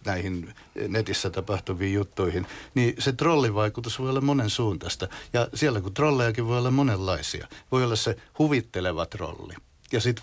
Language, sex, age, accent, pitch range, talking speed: Finnish, male, 60-79, native, 95-120 Hz, 145 wpm